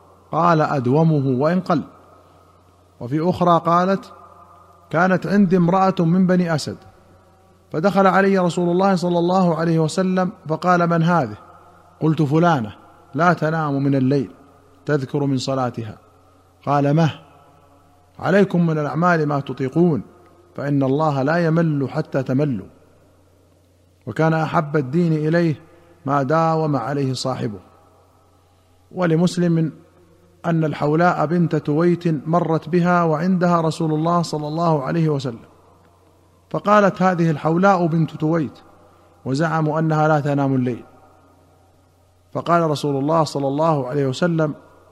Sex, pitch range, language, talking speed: male, 110-170 Hz, Arabic, 115 wpm